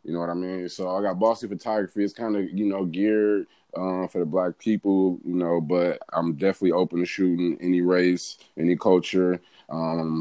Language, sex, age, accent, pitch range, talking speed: English, male, 20-39, American, 90-110 Hz, 200 wpm